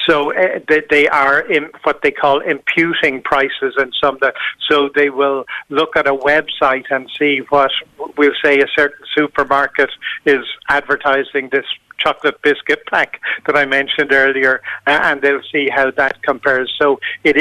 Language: English